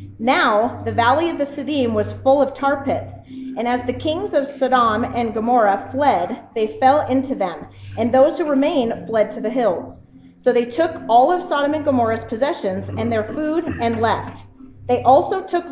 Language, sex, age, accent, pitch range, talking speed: English, female, 30-49, American, 210-285 Hz, 185 wpm